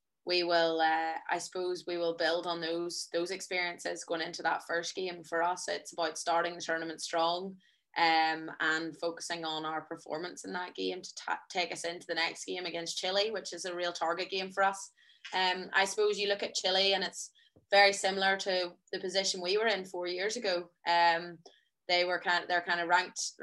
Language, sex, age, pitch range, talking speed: English, female, 20-39, 170-185 Hz, 205 wpm